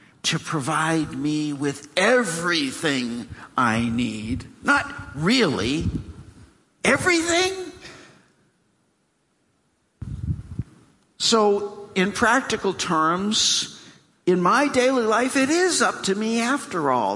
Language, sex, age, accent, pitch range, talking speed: English, male, 60-79, American, 150-250 Hz, 85 wpm